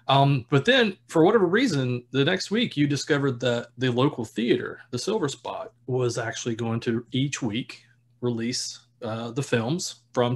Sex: male